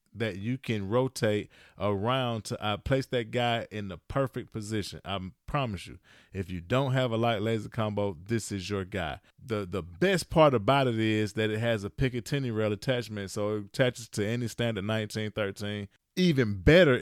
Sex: male